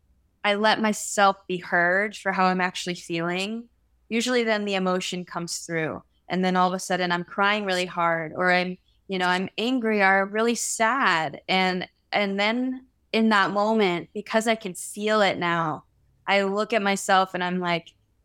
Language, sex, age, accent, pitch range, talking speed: English, female, 10-29, American, 180-210 Hz, 180 wpm